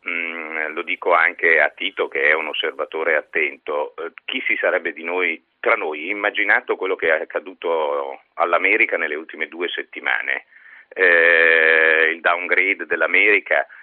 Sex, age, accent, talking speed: male, 40-59, native, 145 wpm